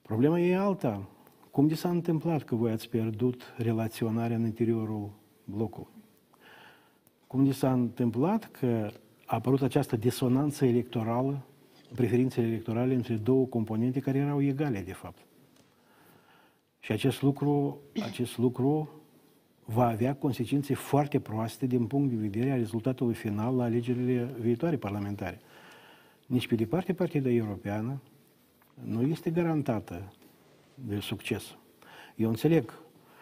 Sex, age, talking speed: male, 50-69, 125 wpm